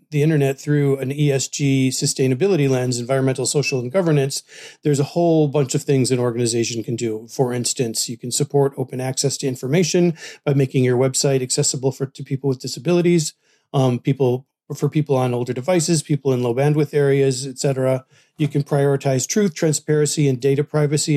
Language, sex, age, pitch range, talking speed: English, male, 40-59, 130-150 Hz, 180 wpm